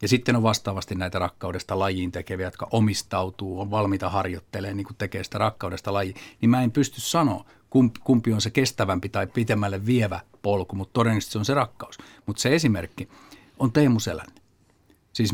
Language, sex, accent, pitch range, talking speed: Finnish, male, native, 95-115 Hz, 170 wpm